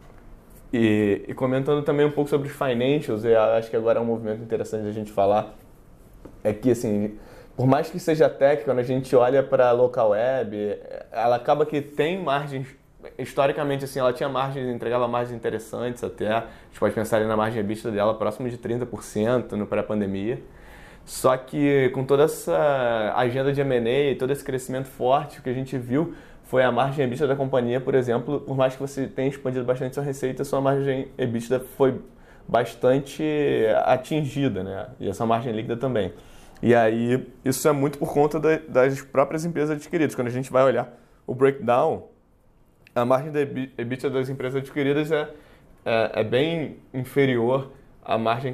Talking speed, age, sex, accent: 175 wpm, 20-39, male, Brazilian